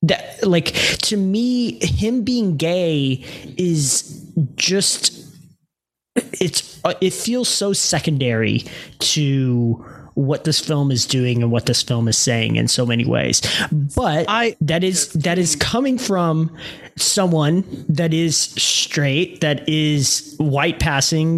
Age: 20-39